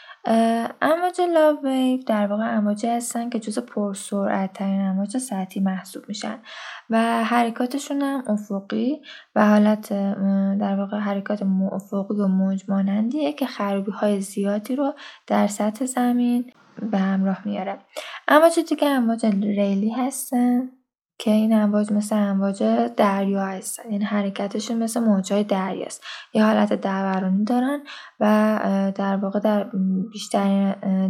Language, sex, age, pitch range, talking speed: Persian, female, 10-29, 195-230 Hz, 120 wpm